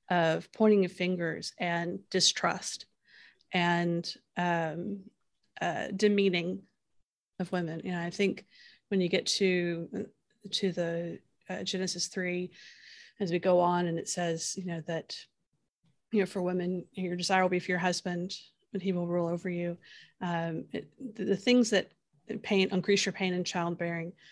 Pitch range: 175-195 Hz